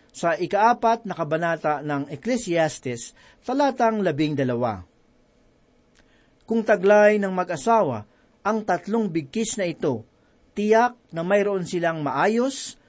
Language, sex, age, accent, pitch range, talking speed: Filipino, male, 40-59, native, 150-215 Hz, 105 wpm